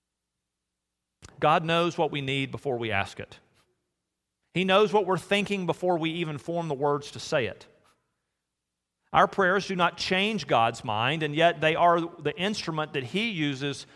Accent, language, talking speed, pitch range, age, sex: American, English, 170 wpm, 135-185 Hz, 40-59, male